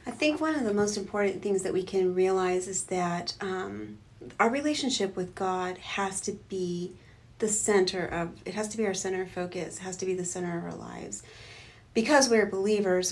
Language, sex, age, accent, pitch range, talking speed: English, female, 30-49, American, 185-215 Hz, 205 wpm